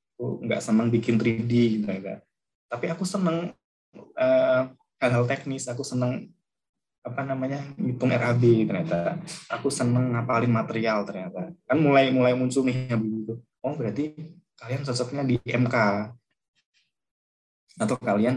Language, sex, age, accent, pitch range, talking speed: Indonesian, male, 20-39, native, 115-135 Hz, 135 wpm